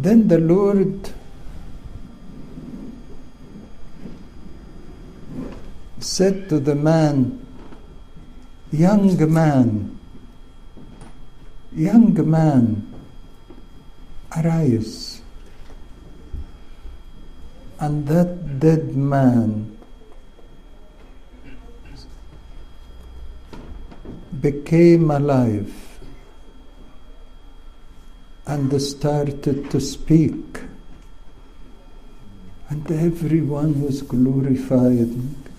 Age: 60-79